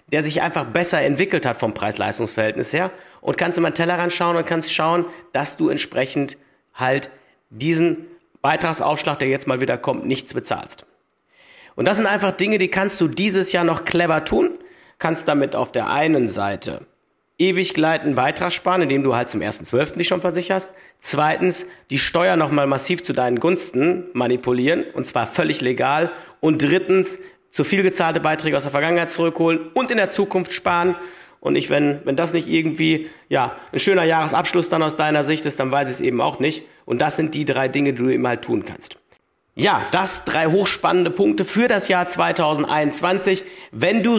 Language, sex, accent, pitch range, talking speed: German, male, German, 145-180 Hz, 185 wpm